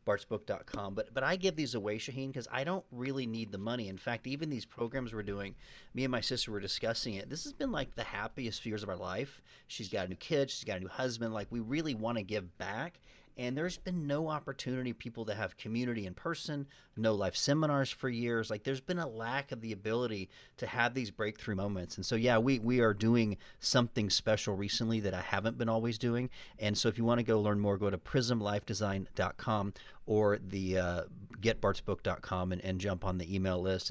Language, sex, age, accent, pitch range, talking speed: English, male, 40-59, American, 100-125 Hz, 225 wpm